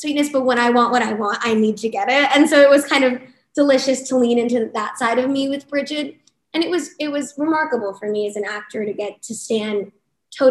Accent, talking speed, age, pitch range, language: American, 255 wpm, 10-29, 220-270 Hz, English